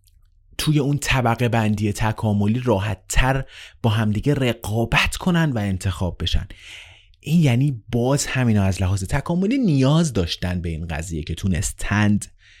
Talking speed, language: 125 wpm, Persian